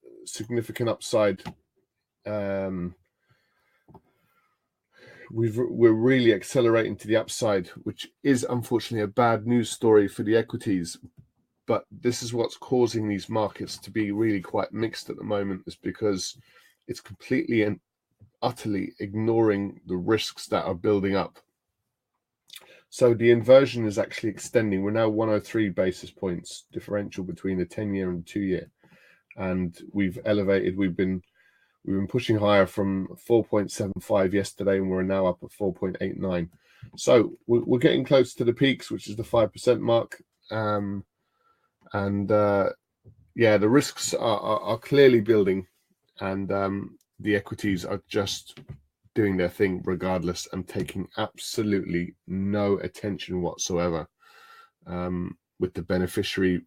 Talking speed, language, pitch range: 135 wpm, English, 95-115 Hz